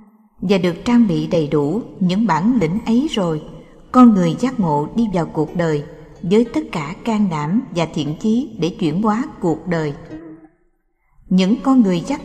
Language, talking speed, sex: Vietnamese, 175 wpm, female